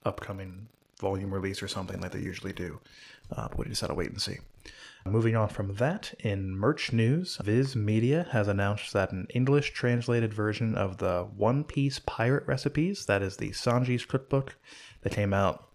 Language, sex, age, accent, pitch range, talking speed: English, male, 20-39, American, 95-120 Hz, 175 wpm